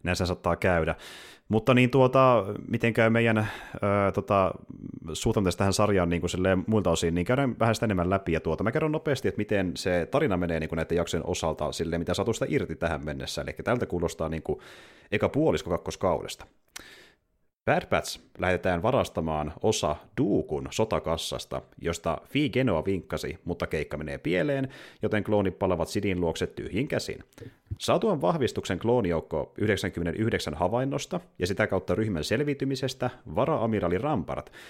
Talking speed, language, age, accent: 145 wpm, Finnish, 30-49, native